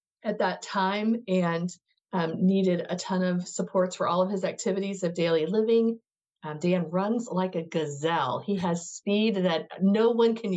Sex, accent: female, American